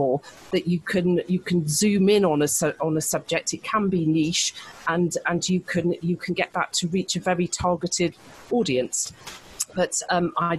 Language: English